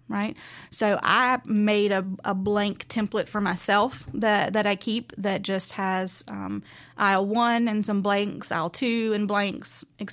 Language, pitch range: English, 185-220 Hz